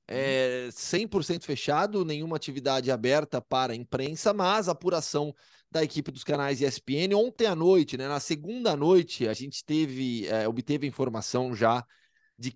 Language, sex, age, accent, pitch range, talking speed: Portuguese, male, 20-39, Brazilian, 135-180 Hz, 150 wpm